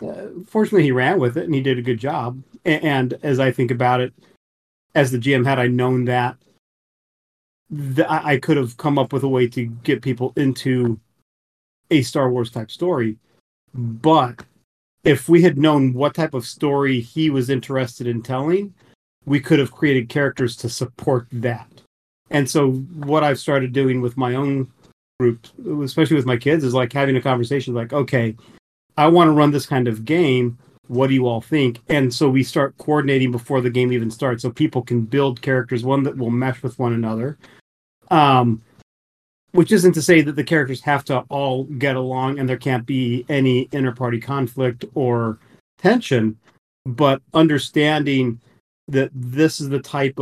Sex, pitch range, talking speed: male, 125-145 Hz, 180 wpm